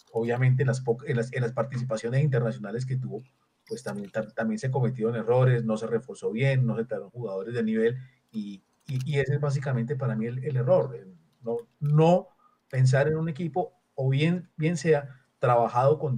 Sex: male